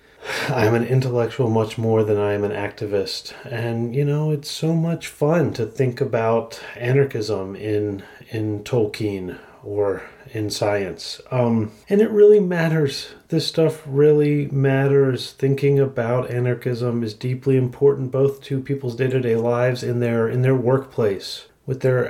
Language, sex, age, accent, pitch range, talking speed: English, male, 30-49, American, 110-135 Hz, 145 wpm